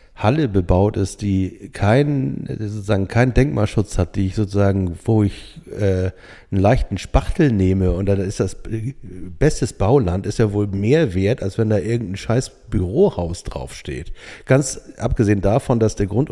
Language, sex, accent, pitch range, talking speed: German, male, German, 95-120 Hz, 160 wpm